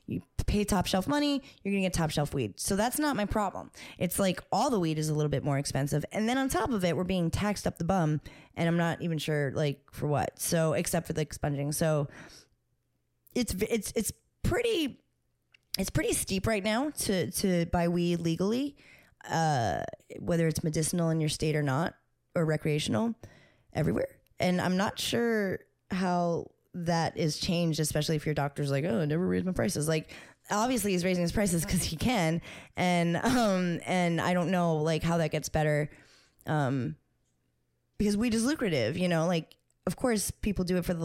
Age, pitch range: 20-39, 155-200 Hz